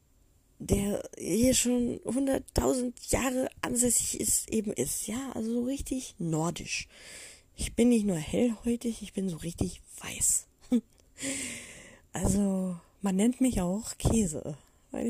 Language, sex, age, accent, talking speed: German, female, 20-39, German, 125 wpm